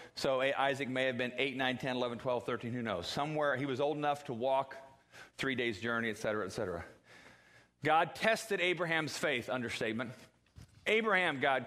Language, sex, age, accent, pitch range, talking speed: English, male, 40-59, American, 100-150 Hz, 165 wpm